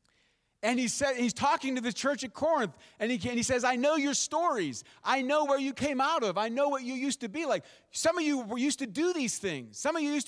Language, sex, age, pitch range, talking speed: English, male, 30-49, 205-270 Hz, 270 wpm